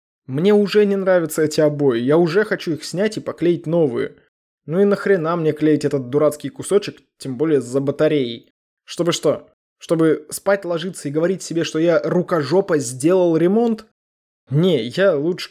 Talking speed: 165 wpm